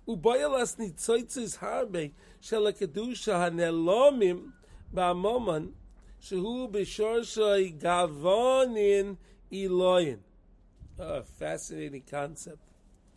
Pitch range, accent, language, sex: 145-195 Hz, American, English, male